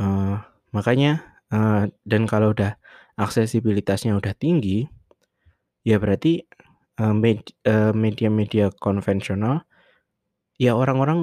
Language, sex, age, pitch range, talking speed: Indonesian, male, 20-39, 100-125 Hz, 95 wpm